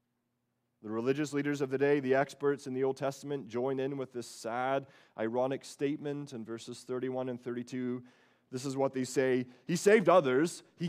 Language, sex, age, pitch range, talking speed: English, male, 30-49, 110-145 Hz, 180 wpm